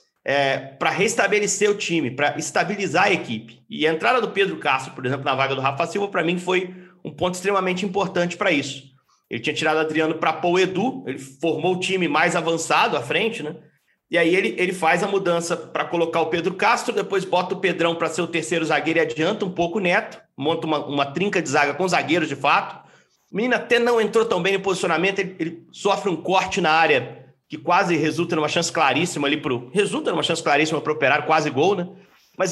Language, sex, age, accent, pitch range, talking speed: Portuguese, male, 40-59, Brazilian, 160-200 Hz, 220 wpm